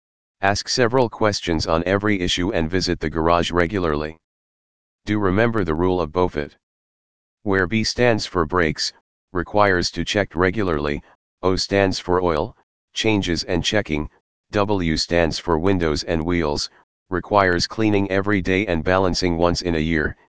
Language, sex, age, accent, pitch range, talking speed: English, male, 40-59, American, 80-100 Hz, 145 wpm